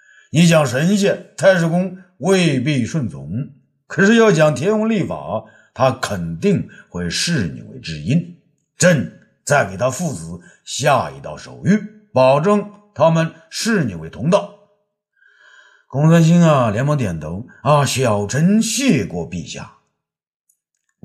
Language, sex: Chinese, male